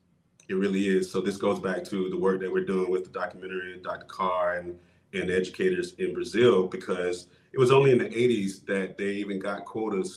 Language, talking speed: English, 205 wpm